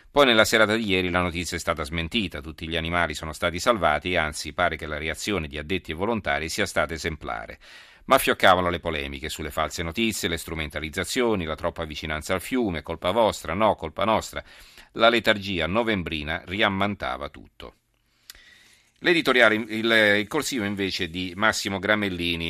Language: Italian